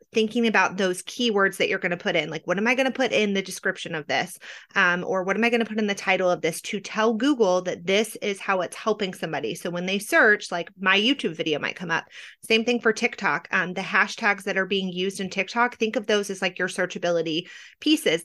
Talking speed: 255 wpm